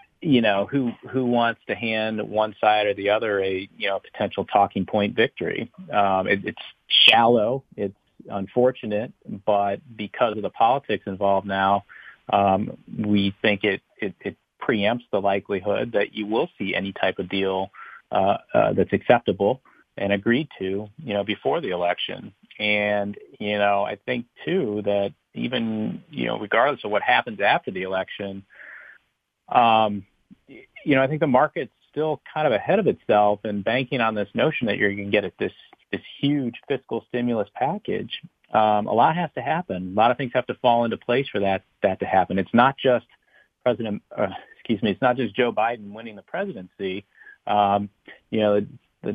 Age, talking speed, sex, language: 40-59, 180 wpm, male, English